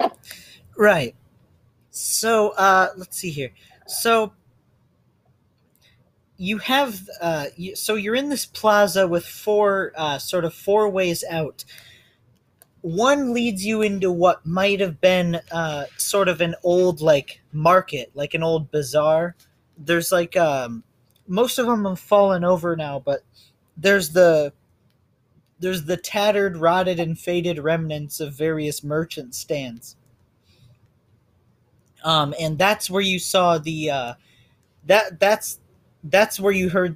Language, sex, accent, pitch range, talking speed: English, male, American, 130-185 Hz, 130 wpm